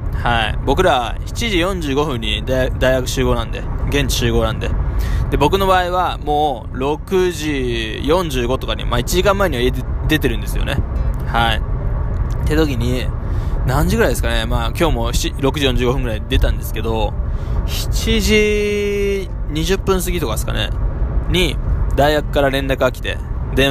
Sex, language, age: male, Japanese, 20-39